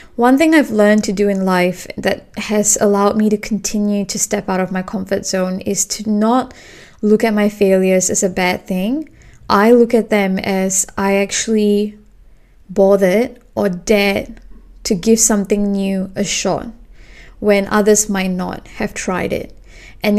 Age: 20-39